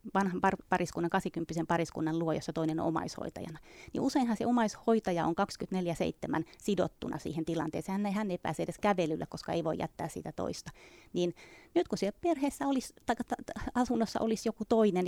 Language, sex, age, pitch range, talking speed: Finnish, female, 30-49, 175-245 Hz, 175 wpm